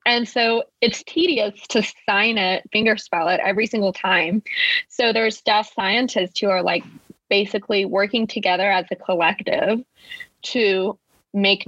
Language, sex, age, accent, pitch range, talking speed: English, female, 20-39, American, 185-235 Hz, 140 wpm